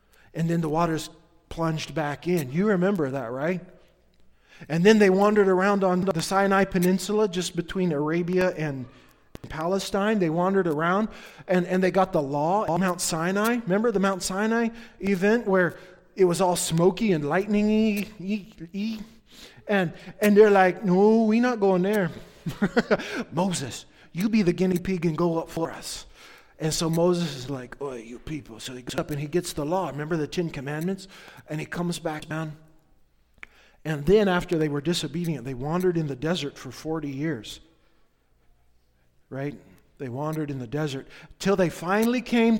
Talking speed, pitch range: 170 wpm, 155-205 Hz